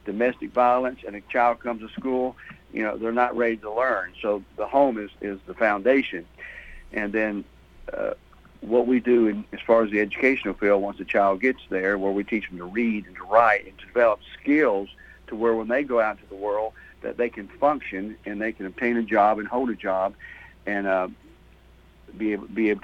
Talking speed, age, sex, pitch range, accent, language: 215 wpm, 60-79, male, 100-120 Hz, American, English